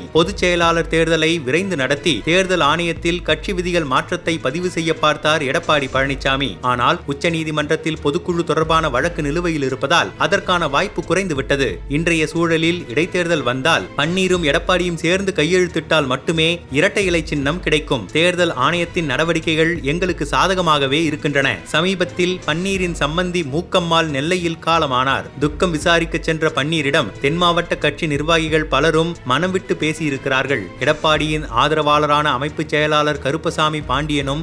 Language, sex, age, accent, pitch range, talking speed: Tamil, male, 30-49, native, 150-175 Hz, 115 wpm